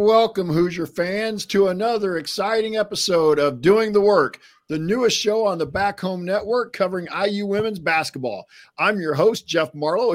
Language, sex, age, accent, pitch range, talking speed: English, male, 50-69, American, 150-200 Hz, 165 wpm